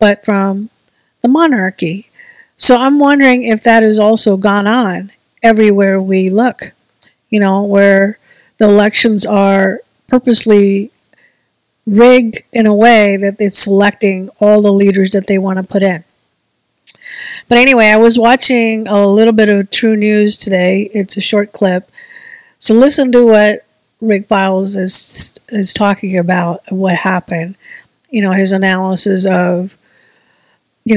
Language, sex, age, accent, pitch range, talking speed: English, female, 50-69, American, 195-225 Hz, 140 wpm